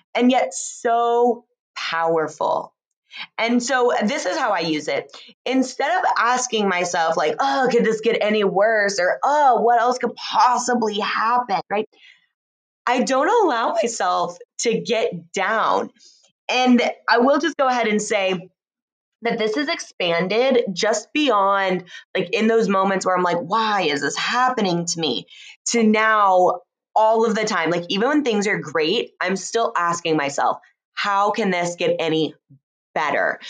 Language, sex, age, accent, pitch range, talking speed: English, female, 20-39, American, 190-245 Hz, 155 wpm